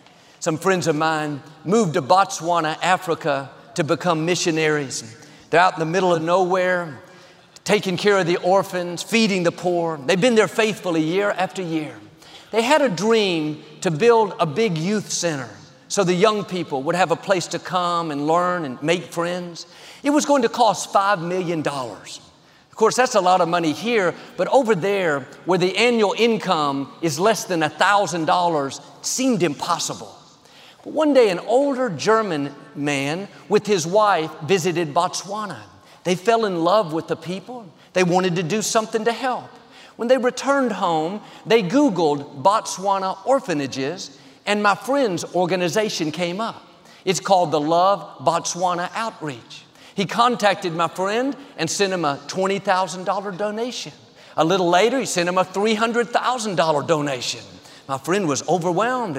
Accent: American